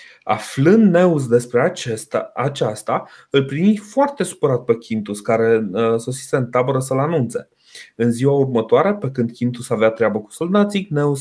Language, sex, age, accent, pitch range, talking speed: Romanian, male, 30-49, native, 115-150 Hz, 145 wpm